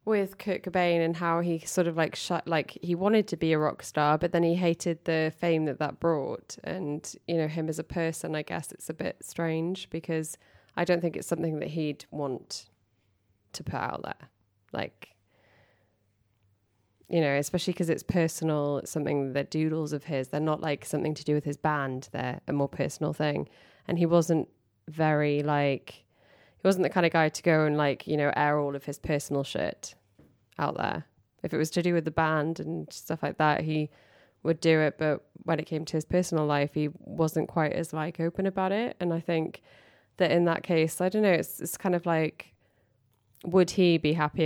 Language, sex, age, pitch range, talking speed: English, female, 10-29, 140-170 Hz, 210 wpm